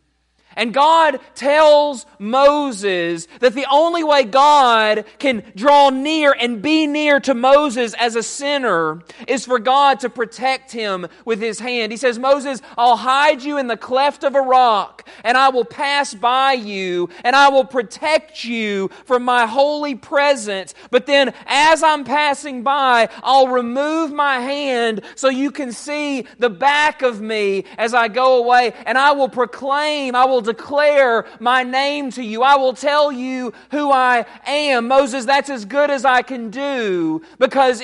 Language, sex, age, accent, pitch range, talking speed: English, male, 40-59, American, 215-275 Hz, 165 wpm